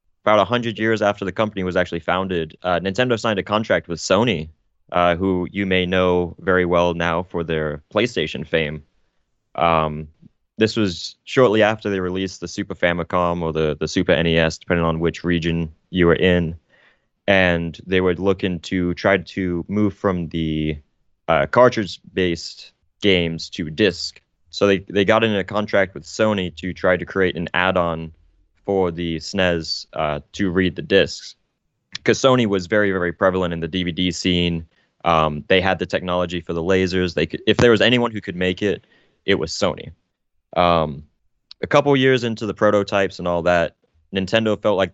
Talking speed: 175 wpm